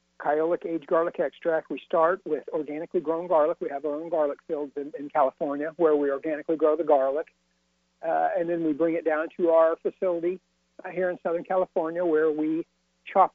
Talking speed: 190 wpm